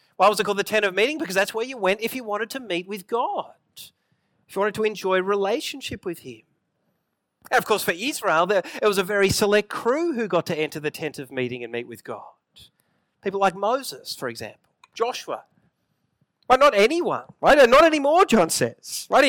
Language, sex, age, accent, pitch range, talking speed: English, male, 40-59, Australian, 175-225 Hz, 205 wpm